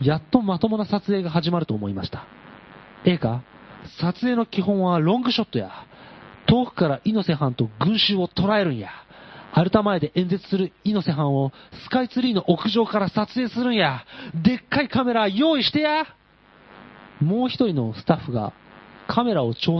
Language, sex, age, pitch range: Japanese, male, 40-59, 140-220 Hz